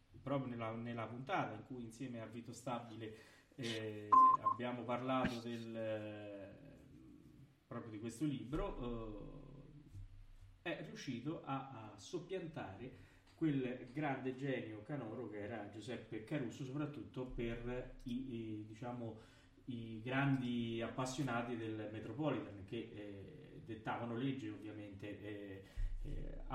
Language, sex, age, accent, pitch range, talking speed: Italian, male, 30-49, native, 110-145 Hz, 115 wpm